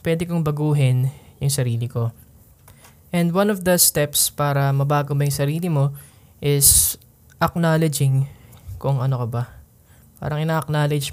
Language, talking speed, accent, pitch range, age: Filipino, 135 wpm, native, 125-150 Hz, 20-39